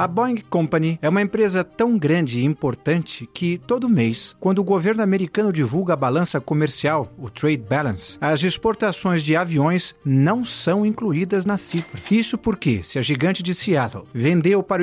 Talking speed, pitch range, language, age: 170 wpm, 140-195 Hz, Portuguese, 50-69